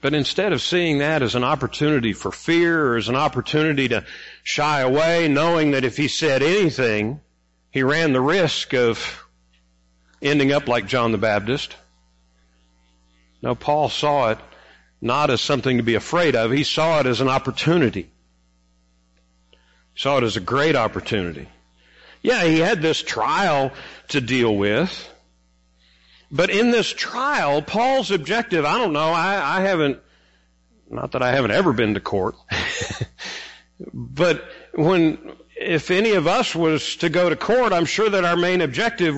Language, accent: English, American